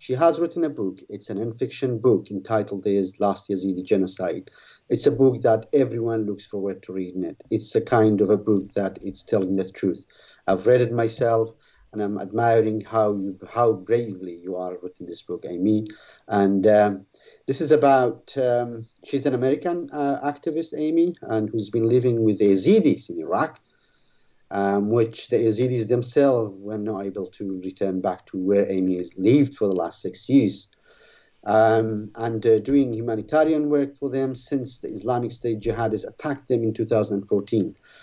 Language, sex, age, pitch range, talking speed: English, male, 50-69, 100-130 Hz, 175 wpm